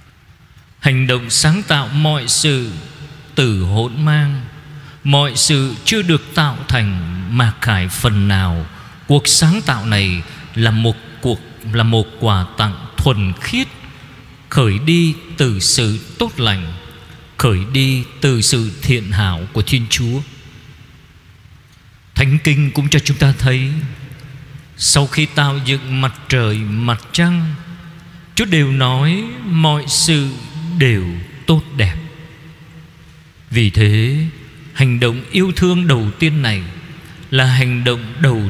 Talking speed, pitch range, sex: 130 wpm, 115-160 Hz, male